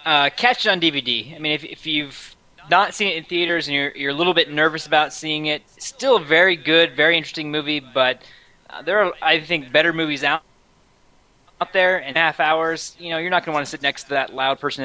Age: 20-39